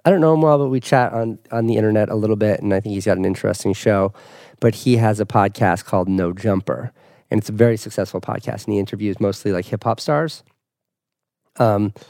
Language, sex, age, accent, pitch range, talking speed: English, male, 30-49, American, 100-120 Hz, 225 wpm